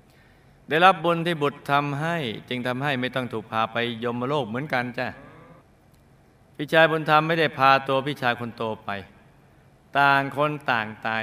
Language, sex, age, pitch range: Thai, male, 20-39, 115-145 Hz